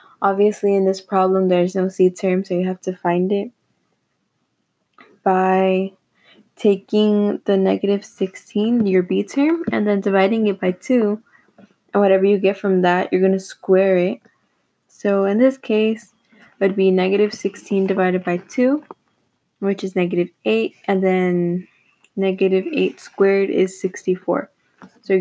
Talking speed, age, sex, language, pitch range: 145 wpm, 20-39, female, English, 190-210 Hz